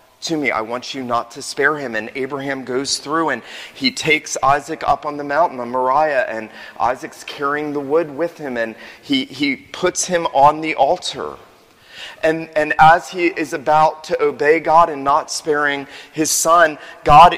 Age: 30-49